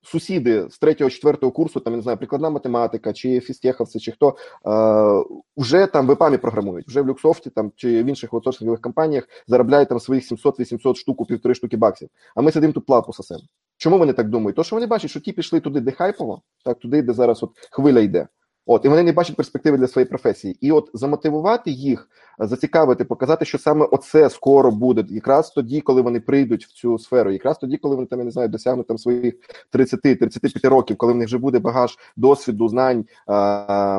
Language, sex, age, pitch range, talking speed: Ukrainian, male, 20-39, 115-145 Hz, 200 wpm